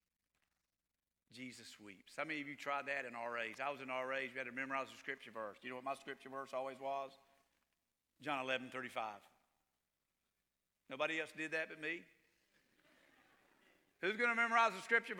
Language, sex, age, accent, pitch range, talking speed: English, male, 50-69, American, 120-165 Hz, 175 wpm